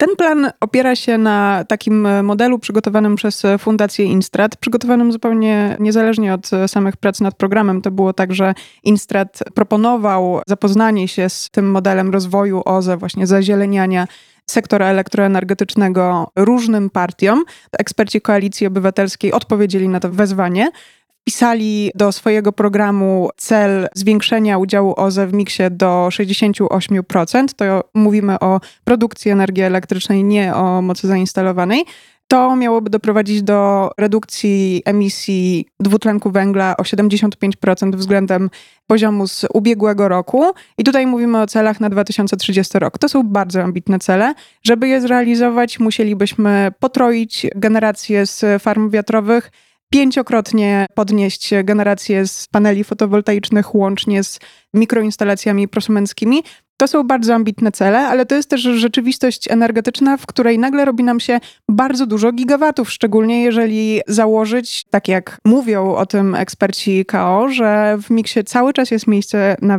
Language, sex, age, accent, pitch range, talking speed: Polish, female, 20-39, native, 195-230 Hz, 130 wpm